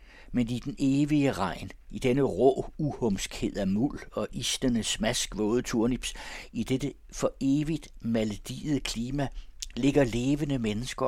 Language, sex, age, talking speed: Danish, male, 60-79, 130 wpm